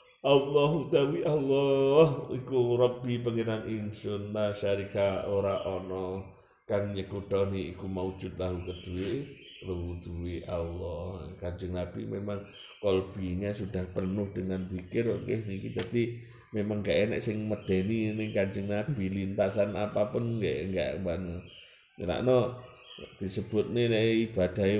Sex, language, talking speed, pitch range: male, Indonesian, 115 wpm, 95-115 Hz